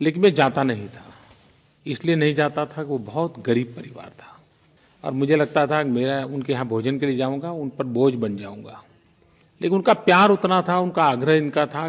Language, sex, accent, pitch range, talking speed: Hindi, male, native, 130-175 Hz, 205 wpm